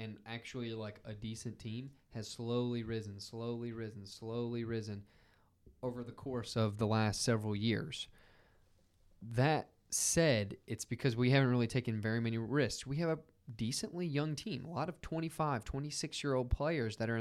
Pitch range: 110-135 Hz